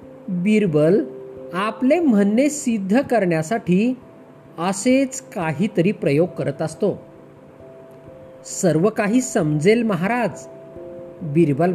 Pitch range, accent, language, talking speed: 155-235 Hz, native, Marathi, 75 wpm